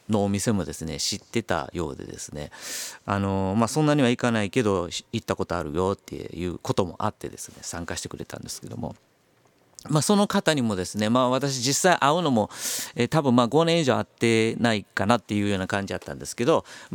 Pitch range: 90-120 Hz